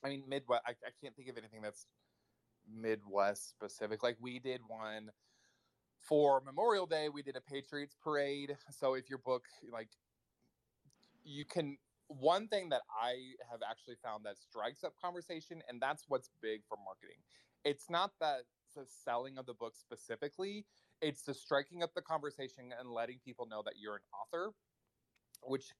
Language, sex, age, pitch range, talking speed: English, male, 20-39, 115-145 Hz, 165 wpm